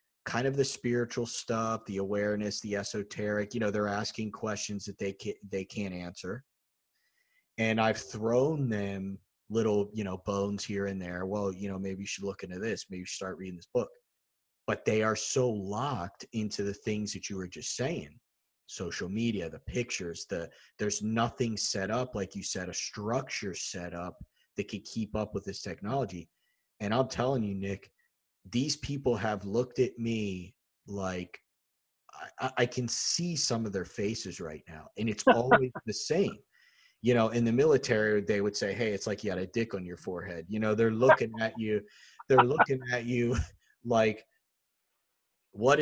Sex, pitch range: male, 100-125 Hz